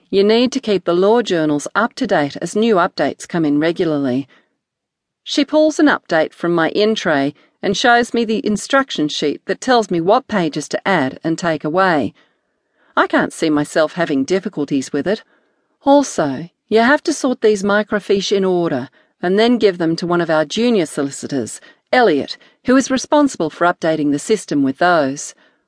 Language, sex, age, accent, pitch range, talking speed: English, female, 40-59, Australian, 160-245 Hz, 180 wpm